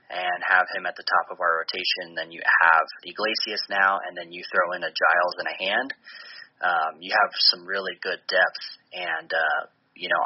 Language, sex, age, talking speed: English, male, 20-39, 205 wpm